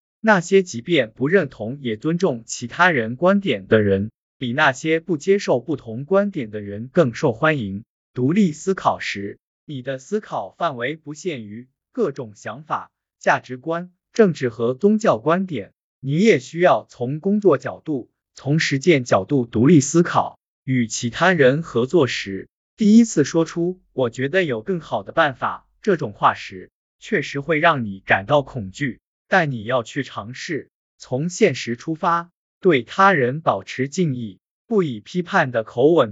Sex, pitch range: male, 120-180 Hz